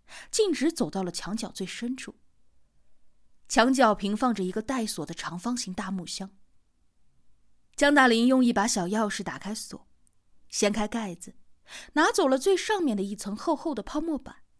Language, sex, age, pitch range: Chinese, female, 20-39, 195-280 Hz